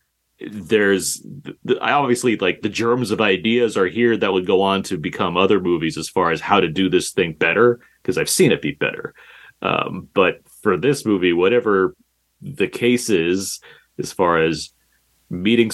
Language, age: English, 30-49